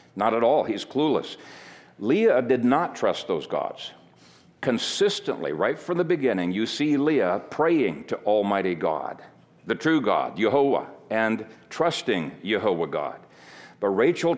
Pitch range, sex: 110-145 Hz, male